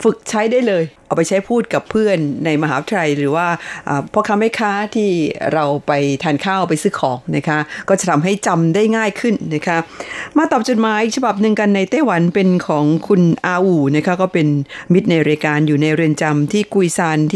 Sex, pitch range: female, 155-210 Hz